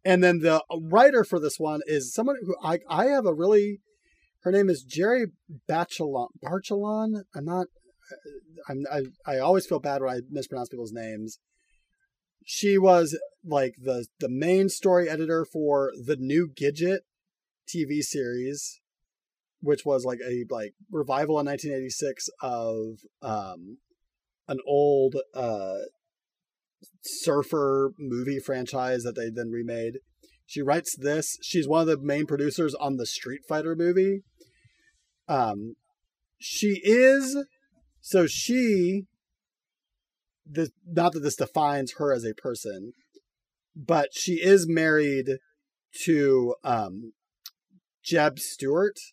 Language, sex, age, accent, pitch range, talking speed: English, male, 30-49, American, 135-190 Hz, 125 wpm